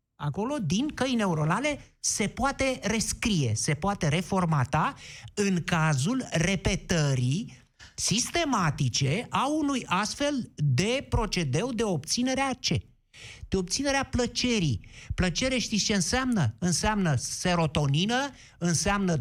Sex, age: male, 50-69